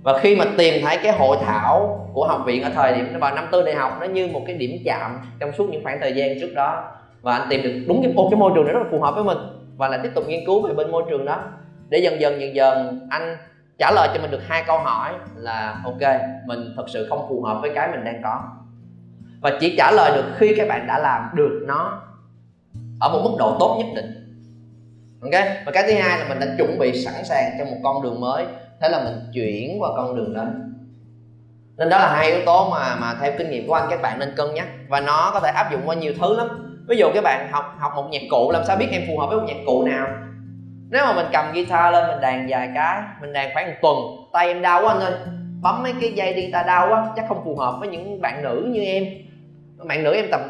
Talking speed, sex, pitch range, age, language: 265 wpm, male, 120-180 Hz, 20-39, Vietnamese